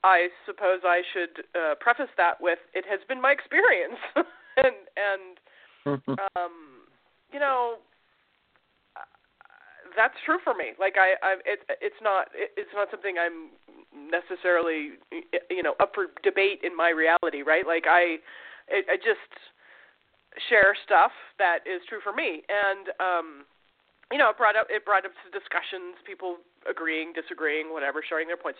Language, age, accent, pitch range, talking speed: English, 30-49, American, 165-265 Hz, 150 wpm